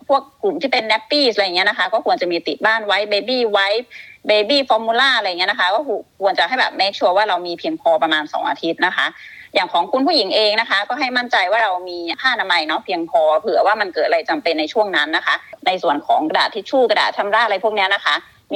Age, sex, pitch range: 30-49, female, 195-280 Hz